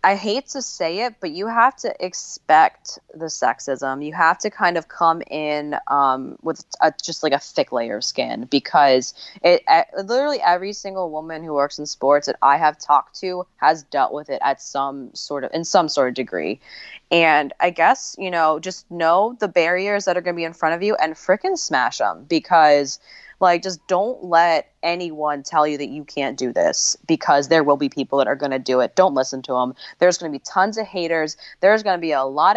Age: 20-39